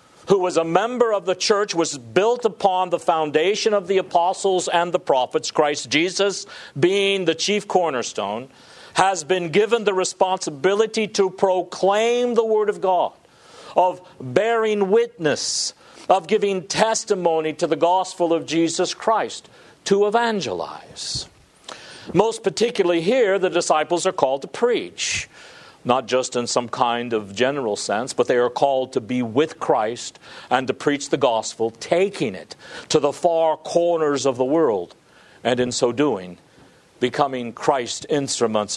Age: 50-69